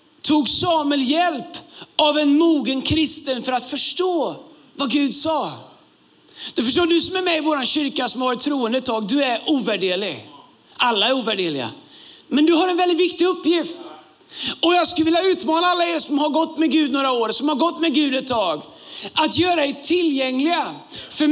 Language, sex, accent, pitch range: Swedish, male, native, 290-330 Hz